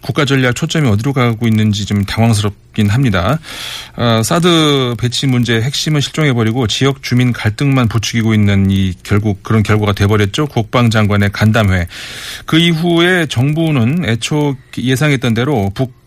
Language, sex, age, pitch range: Korean, male, 40-59, 110-145 Hz